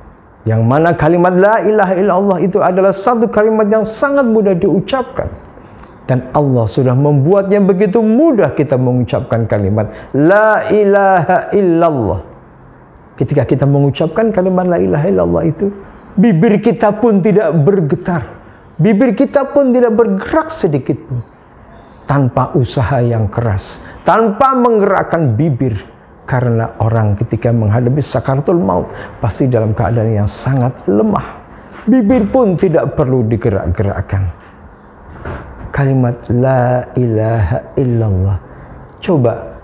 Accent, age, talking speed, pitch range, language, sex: native, 50-69, 115 wpm, 110-190 Hz, Indonesian, male